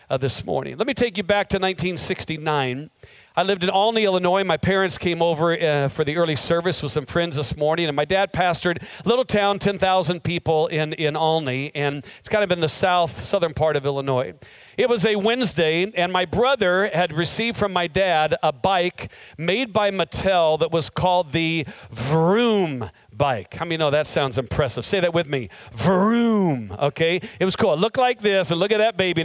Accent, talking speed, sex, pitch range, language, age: American, 200 wpm, male, 155-200 Hz, English, 40-59